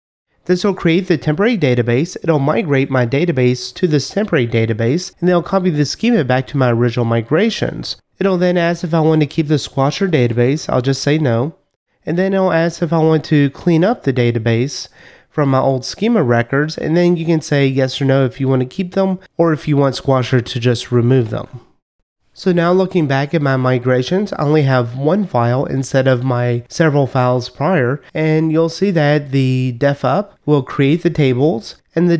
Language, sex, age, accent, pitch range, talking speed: English, male, 30-49, American, 130-175 Hz, 215 wpm